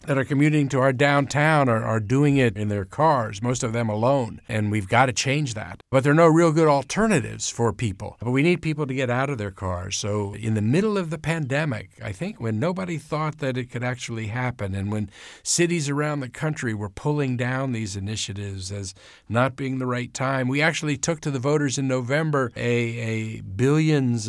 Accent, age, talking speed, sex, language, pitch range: American, 50-69, 215 wpm, male, English, 110-140 Hz